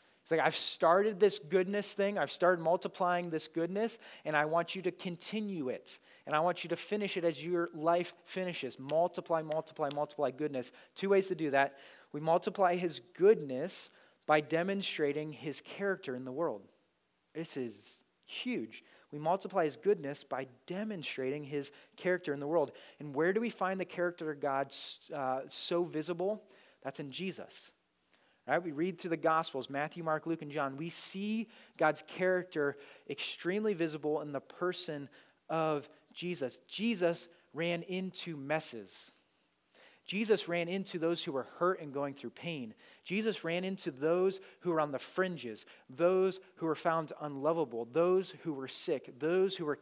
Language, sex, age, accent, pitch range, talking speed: English, male, 30-49, American, 150-185 Hz, 165 wpm